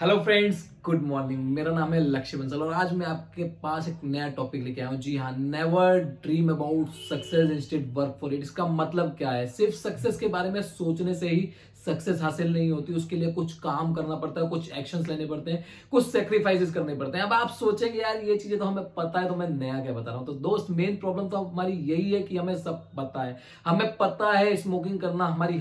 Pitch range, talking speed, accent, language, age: 155-185 Hz, 235 wpm, native, Hindi, 20-39